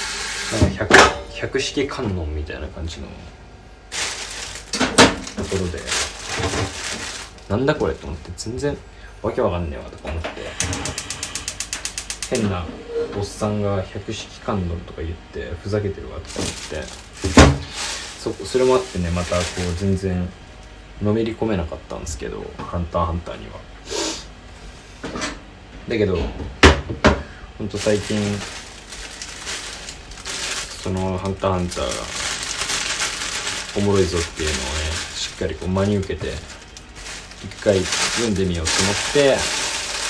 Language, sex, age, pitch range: Japanese, male, 20-39, 85-100 Hz